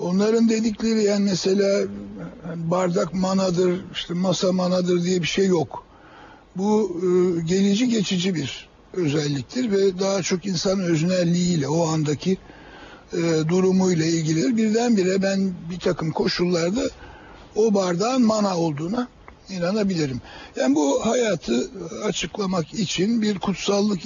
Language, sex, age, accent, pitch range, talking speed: Turkish, male, 60-79, native, 165-200 Hz, 110 wpm